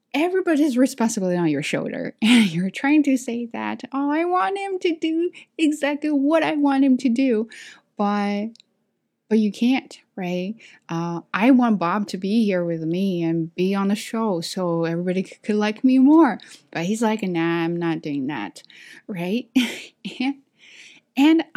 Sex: female